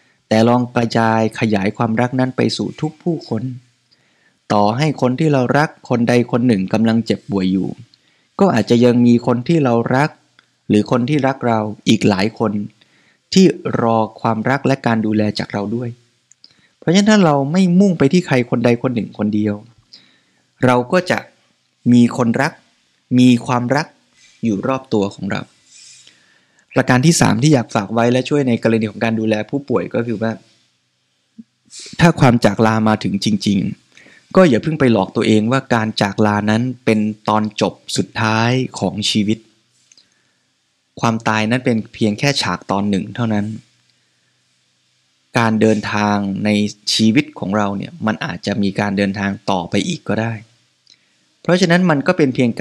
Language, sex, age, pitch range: Thai, male, 20-39, 105-125 Hz